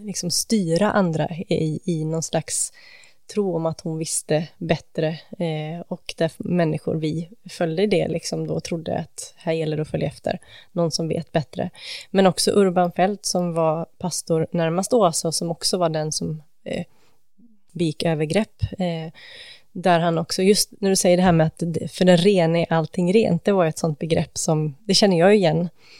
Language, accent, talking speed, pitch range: English, Swedish, 185 wpm, 165-195 Hz